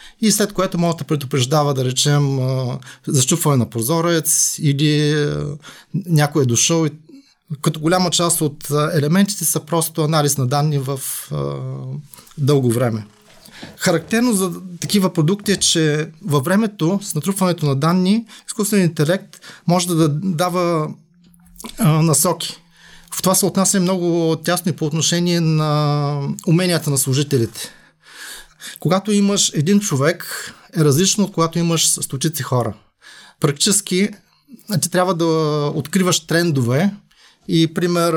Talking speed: 125 wpm